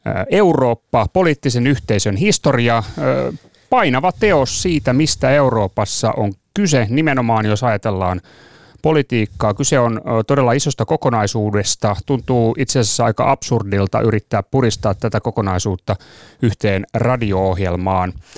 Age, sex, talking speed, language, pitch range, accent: 30-49, male, 100 wpm, Finnish, 105-140 Hz, native